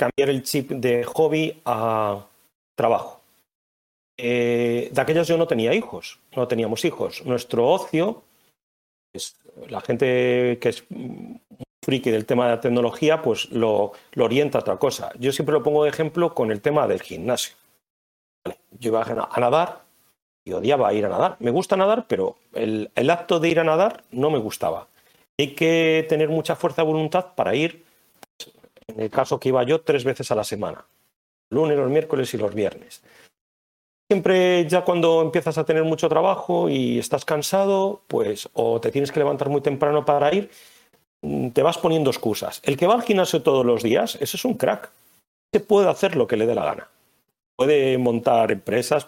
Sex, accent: male, Spanish